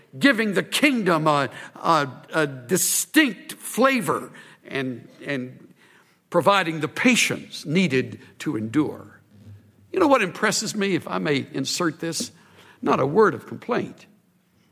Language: English